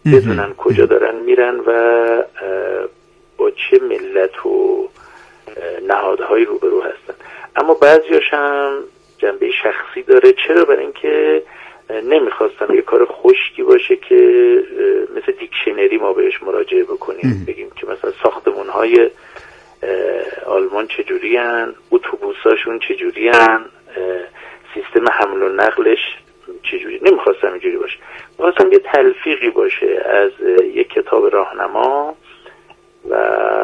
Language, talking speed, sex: Persian, 110 wpm, male